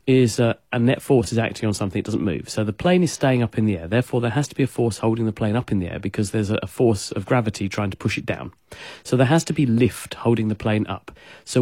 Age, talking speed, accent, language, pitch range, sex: 40-59, 300 wpm, British, English, 105-130 Hz, male